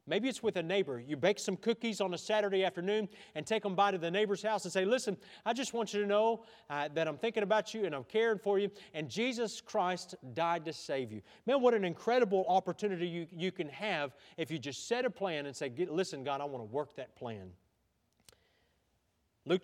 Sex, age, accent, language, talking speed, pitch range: male, 40-59, American, English, 225 wpm, 160-205 Hz